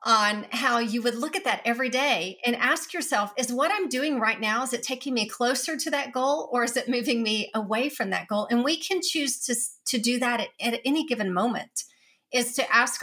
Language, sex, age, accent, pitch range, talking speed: English, female, 40-59, American, 210-260 Hz, 235 wpm